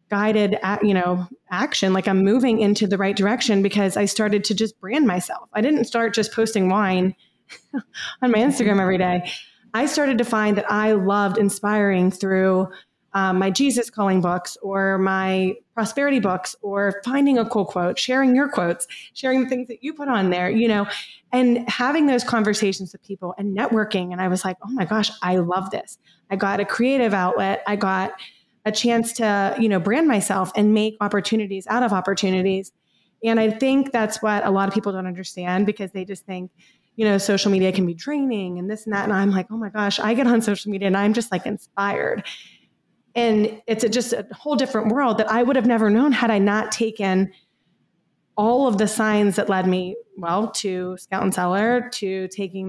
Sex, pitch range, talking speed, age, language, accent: female, 190-230 Hz, 200 wpm, 20-39, English, American